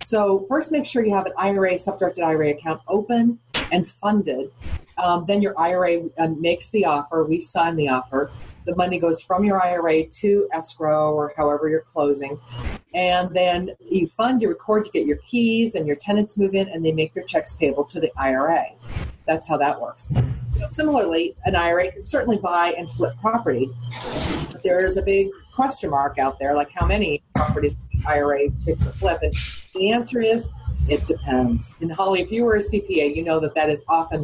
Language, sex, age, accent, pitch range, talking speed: English, female, 40-59, American, 145-200 Hz, 190 wpm